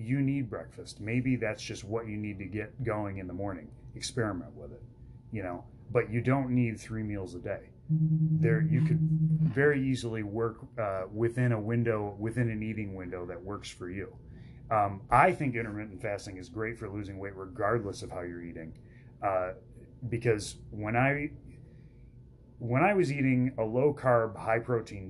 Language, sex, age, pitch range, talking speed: English, male, 30-49, 110-130 Hz, 175 wpm